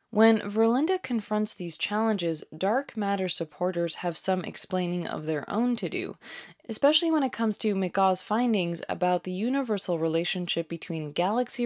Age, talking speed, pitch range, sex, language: 20-39, 150 wpm, 170-220 Hz, female, English